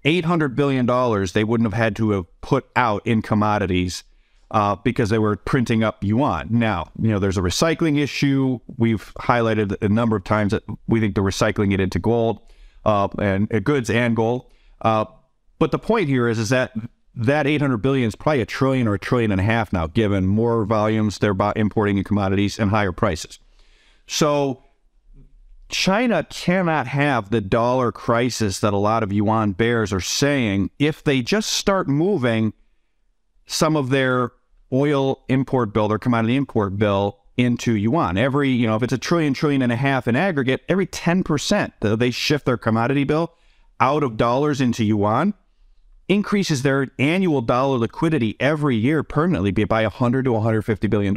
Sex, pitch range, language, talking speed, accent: male, 110-140 Hz, English, 175 wpm, American